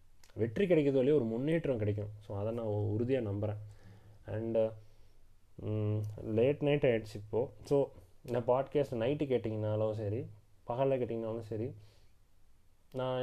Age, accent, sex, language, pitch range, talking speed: 20-39, native, male, Tamil, 105-125 Hz, 120 wpm